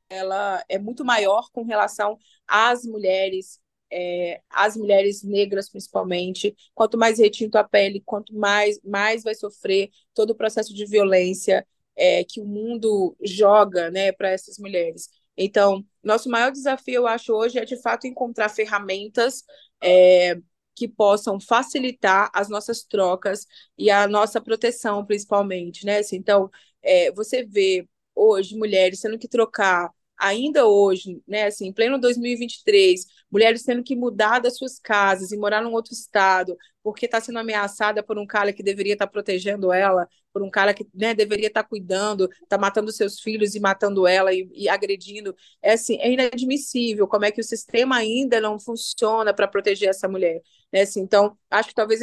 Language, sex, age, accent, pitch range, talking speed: Portuguese, female, 20-39, Brazilian, 200-235 Hz, 155 wpm